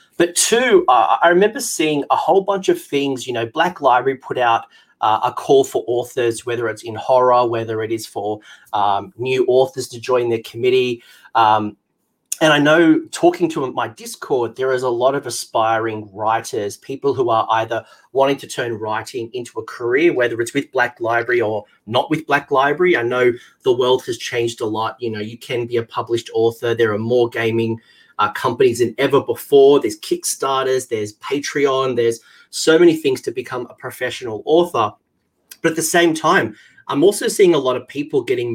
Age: 30-49